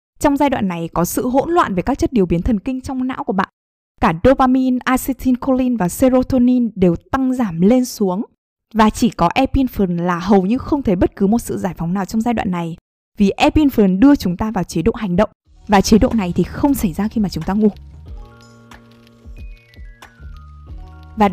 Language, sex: Vietnamese, female